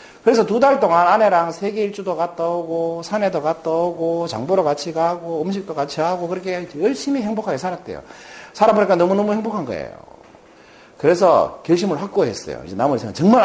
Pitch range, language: 170-265 Hz, Korean